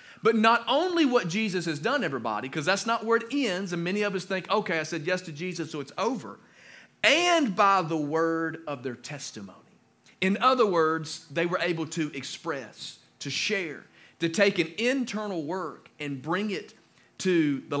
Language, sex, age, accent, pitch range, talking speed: English, male, 40-59, American, 140-185 Hz, 185 wpm